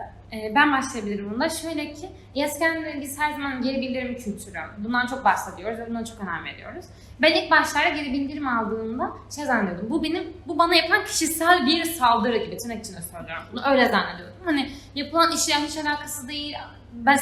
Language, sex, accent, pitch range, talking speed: Turkish, female, native, 235-300 Hz, 175 wpm